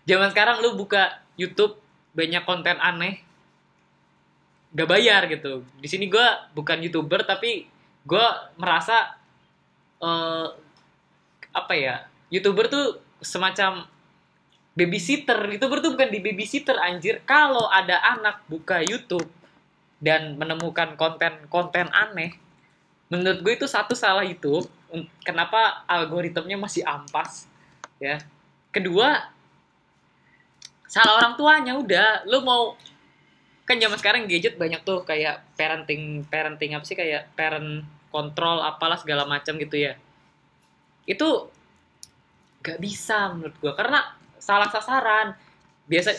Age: 20-39